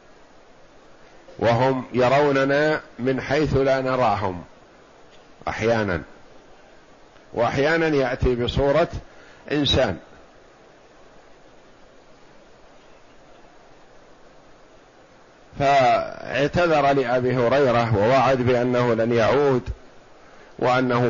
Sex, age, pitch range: male, 50-69, 120-145 Hz